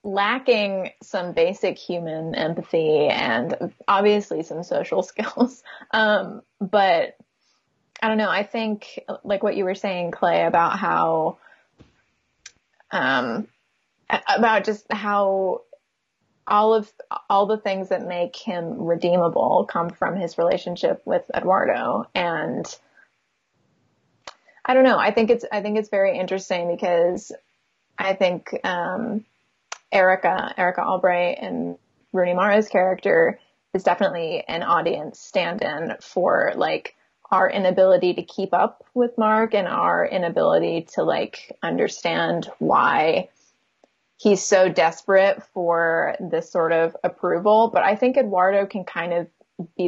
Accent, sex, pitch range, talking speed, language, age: American, female, 180-225 Hz, 125 wpm, English, 20-39